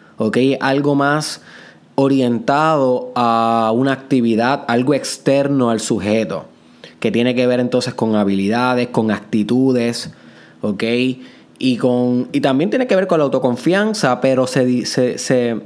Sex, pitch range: male, 110-135 Hz